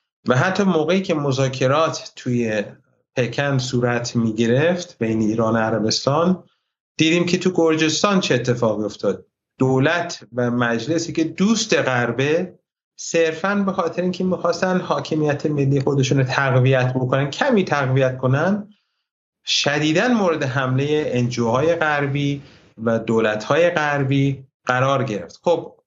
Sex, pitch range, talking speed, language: male, 125-160 Hz, 120 wpm, Persian